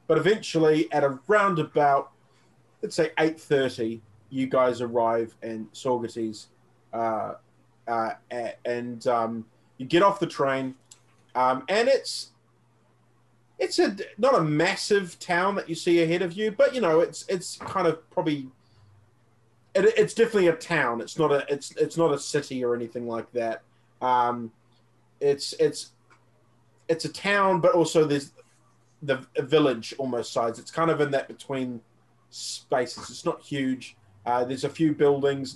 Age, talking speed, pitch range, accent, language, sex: 30-49, 155 wpm, 120-160 Hz, Australian, English, male